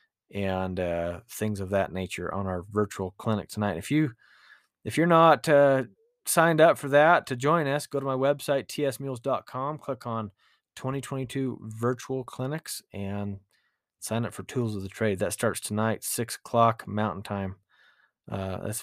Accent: American